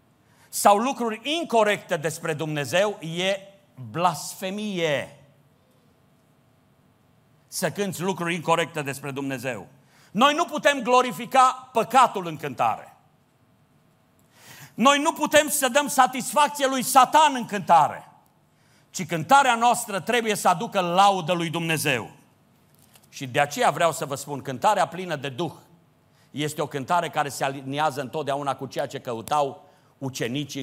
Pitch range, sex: 135-225 Hz, male